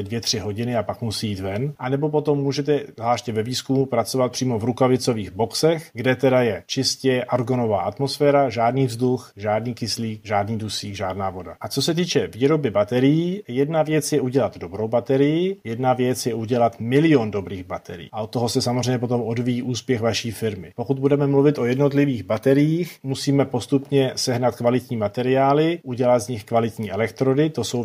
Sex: male